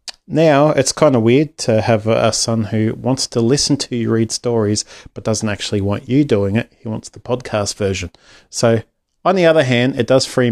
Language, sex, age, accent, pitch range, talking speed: English, male, 30-49, Australian, 105-125 Hz, 210 wpm